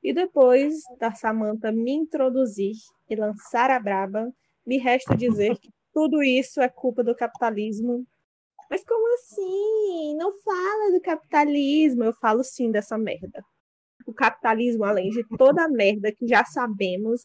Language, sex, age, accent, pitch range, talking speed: Portuguese, female, 20-39, Brazilian, 235-305 Hz, 145 wpm